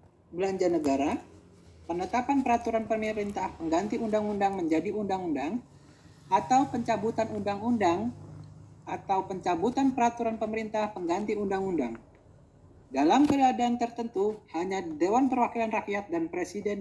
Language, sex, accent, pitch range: Indonesian, male, native, 175-235 Hz